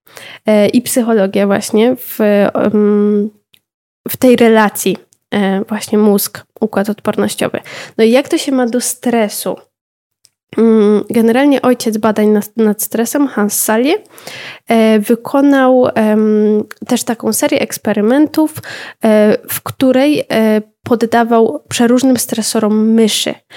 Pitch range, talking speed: 215-245 Hz, 95 wpm